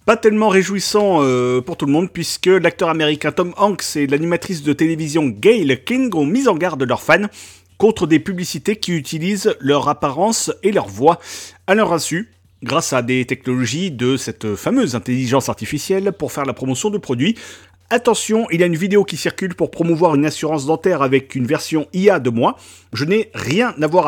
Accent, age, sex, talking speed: French, 40-59, male, 190 wpm